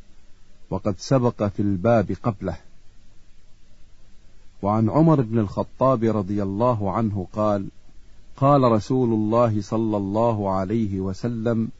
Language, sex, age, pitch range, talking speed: Arabic, male, 50-69, 100-120 Hz, 100 wpm